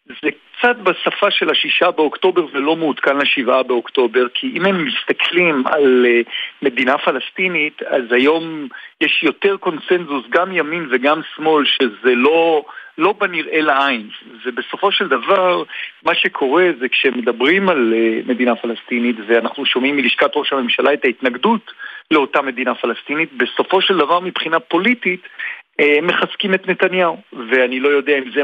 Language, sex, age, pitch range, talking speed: Hebrew, male, 50-69, 125-180 Hz, 140 wpm